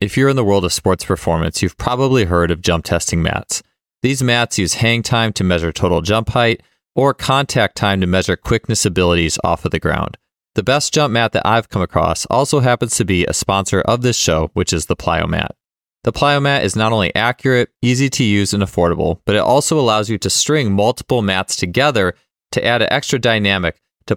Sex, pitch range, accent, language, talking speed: male, 90-115 Hz, American, English, 215 wpm